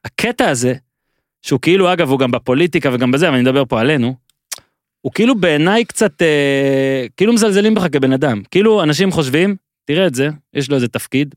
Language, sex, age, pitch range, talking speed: Hebrew, male, 30-49, 130-205 Hz, 185 wpm